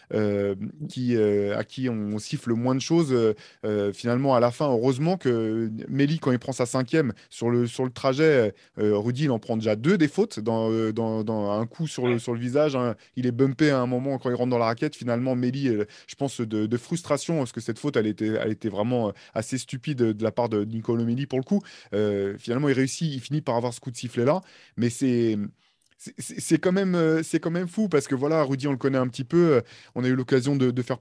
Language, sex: French, male